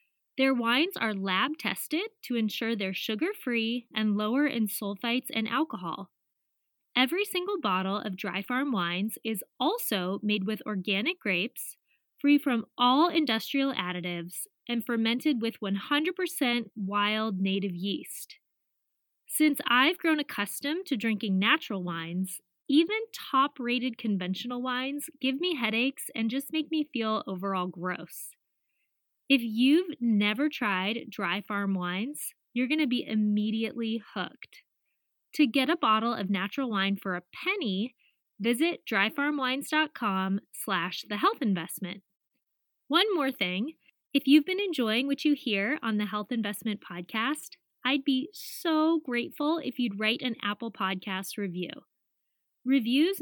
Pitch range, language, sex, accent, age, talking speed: 205-295 Hz, English, female, American, 20-39, 130 wpm